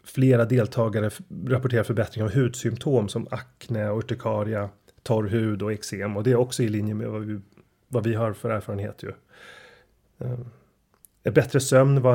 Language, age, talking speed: Swedish, 30-49, 160 wpm